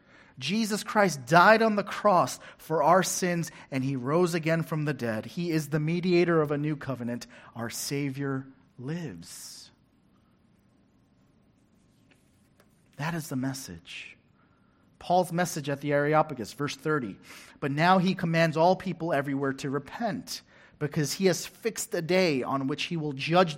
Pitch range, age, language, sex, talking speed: 135-180 Hz, 30-49, English, male, 150 wpm